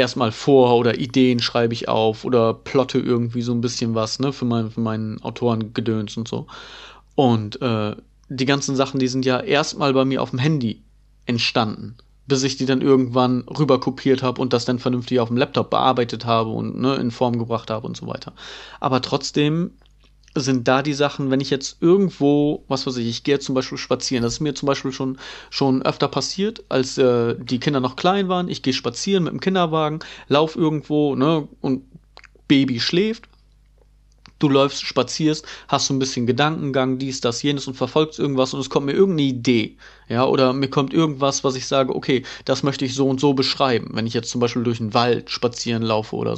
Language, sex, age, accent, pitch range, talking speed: German, male, 30-49, German, 125-140 Hz, 205 wpm